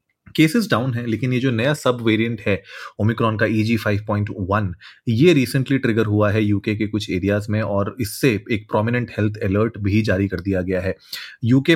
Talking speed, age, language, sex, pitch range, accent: 190 wpm, 30-49, Hindi, male, 100-120 Hz, native